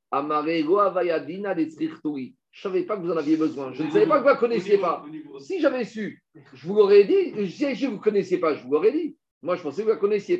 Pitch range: 160-220 Hz